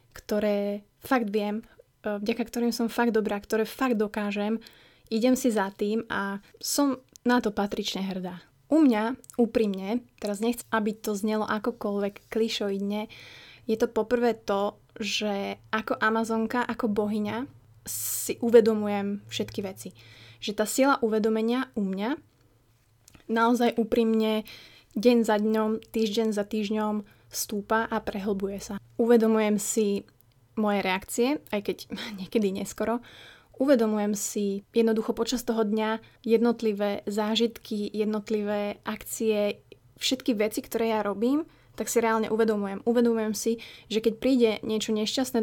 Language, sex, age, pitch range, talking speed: Slovak, female, 20-39, 205-230 Hz, 125 wpm